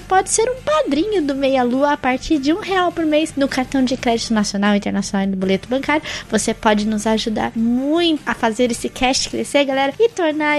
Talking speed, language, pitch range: 210 wpm, Portuguese, 235-325 Hz